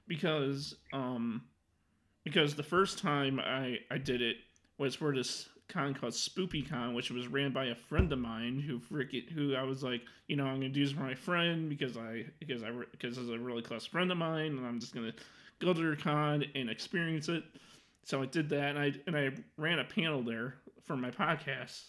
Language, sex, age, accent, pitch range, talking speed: English, male, 30-49, American, 125-155 Hz, 215 wpm